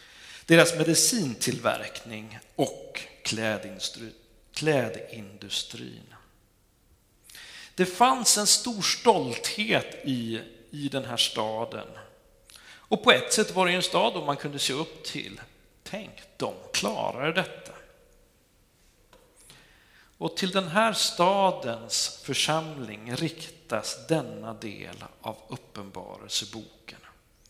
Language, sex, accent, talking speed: Swedish, male, native, 90 wpm